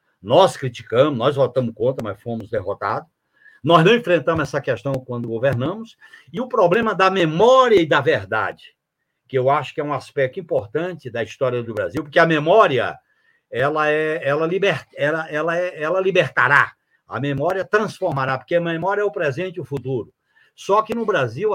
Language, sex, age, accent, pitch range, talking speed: Portuguese, male, 60-79, Brazilian, 130-180 Hz, 175 wpm